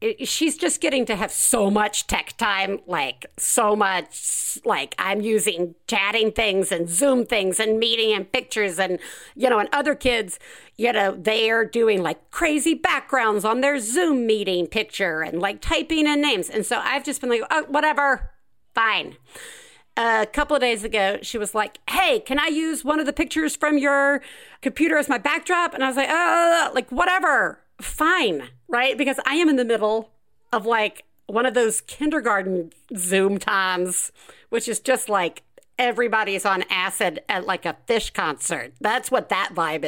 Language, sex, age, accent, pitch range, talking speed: English, female, 50-69, American, 200-290 Hz, 180 wpm